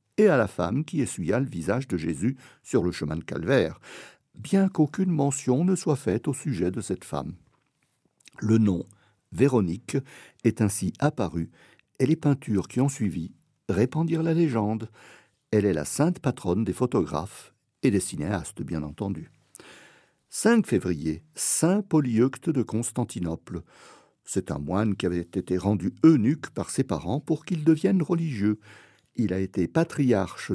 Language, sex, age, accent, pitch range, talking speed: French, male, 60-79, French, 90-130 Hz, 150 wpm